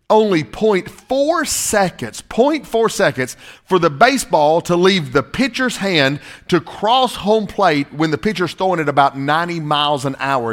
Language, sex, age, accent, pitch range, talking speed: English, male, 40-59, American, 175-255 Hz, 155 wpm